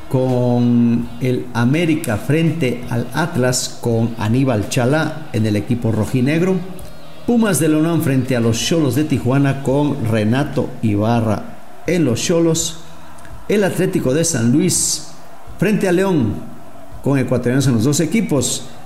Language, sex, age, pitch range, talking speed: English, male, 50-69, 120-160 Hz, 135 wpm